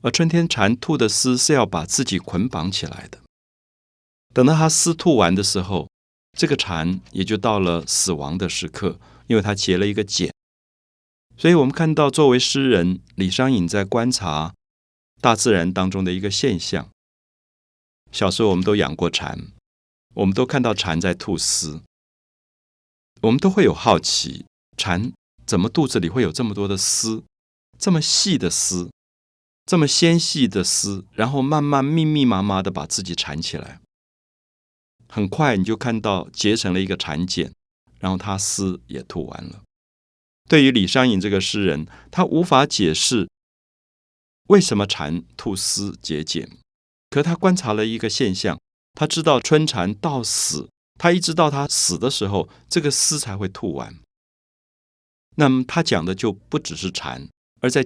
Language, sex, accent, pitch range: Chinese, male, native, 85-130 Hz